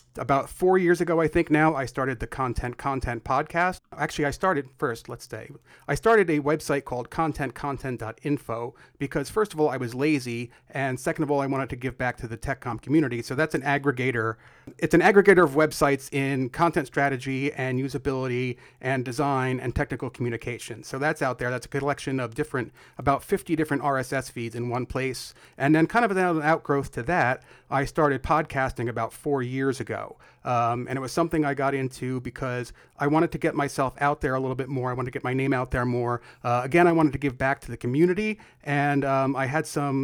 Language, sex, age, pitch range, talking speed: English, male, 30-49, 125-150 Hz, 210 wpm